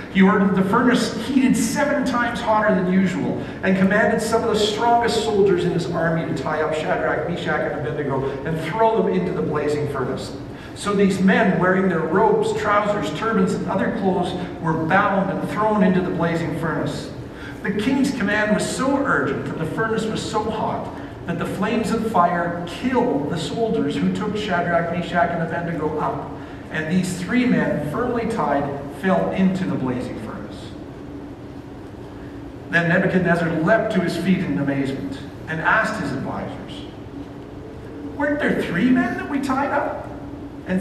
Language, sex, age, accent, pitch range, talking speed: English, male, 50-69, American, 155-220 Hz, 165 wpm